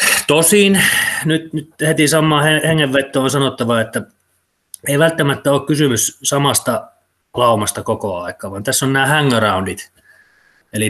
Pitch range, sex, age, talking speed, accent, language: 105-135 Hz, male, 30-49, 125 wpm, native, Finnish